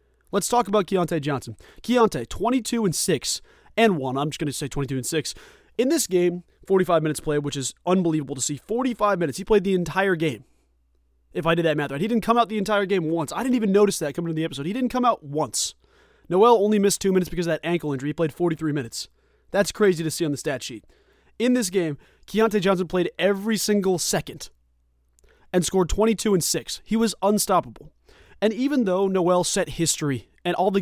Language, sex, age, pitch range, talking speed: English, male, 30-49, 150-205 Hz, 220 wpm